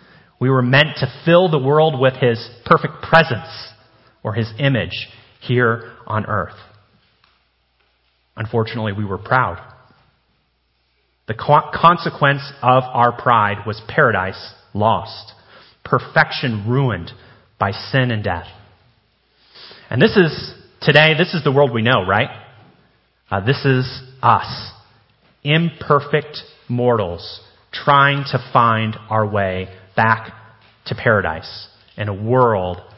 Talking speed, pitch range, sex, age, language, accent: 115 wpm, 105-140 Hz, male, 30-49, English, American